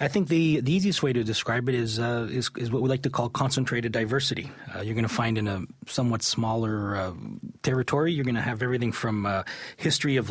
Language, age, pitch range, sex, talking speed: English, 30-49, 110-130 Hz, male, 235 wpm